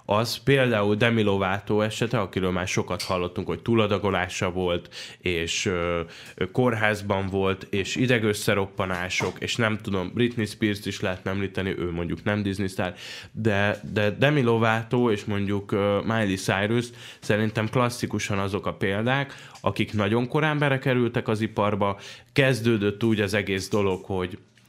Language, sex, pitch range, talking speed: Hungarian, male, 90-110 Hz, 130 wpm